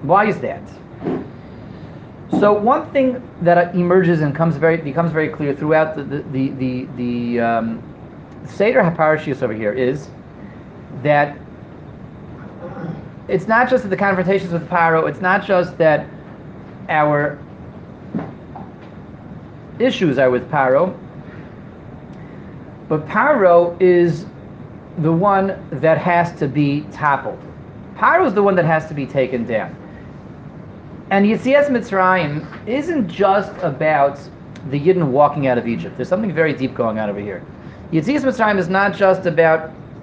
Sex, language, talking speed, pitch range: male, English, 135 wpm, 145-185 Hz